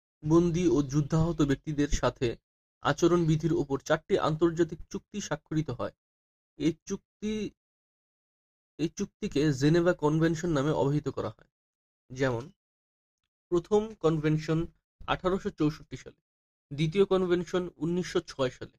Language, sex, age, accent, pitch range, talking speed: Bengali, male, 30-49, native, 145-180 Hz, 55 wpm